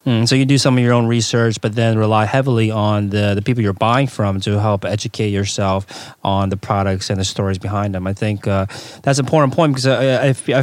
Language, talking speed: English, 230 wpm